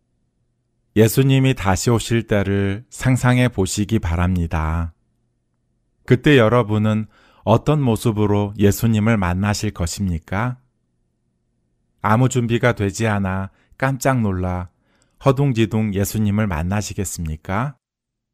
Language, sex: Korean, male